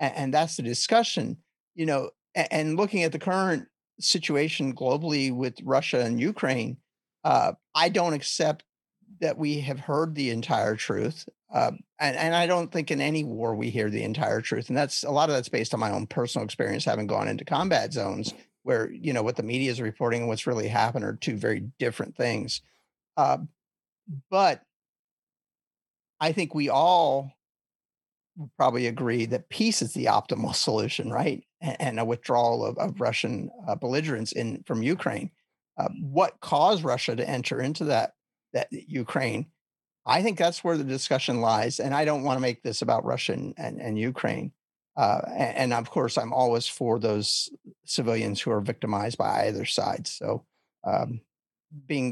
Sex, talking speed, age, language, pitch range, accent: male, 175 wpm, 50-69, English, 120-160 Hz, American